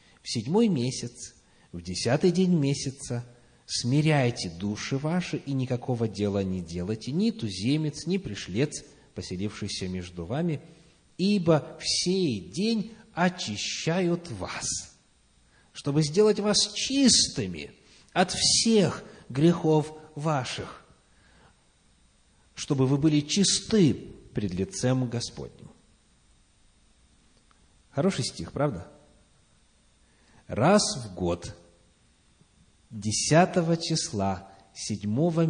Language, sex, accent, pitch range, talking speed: Russian, male, native, 100-170 Hz, 90 wpm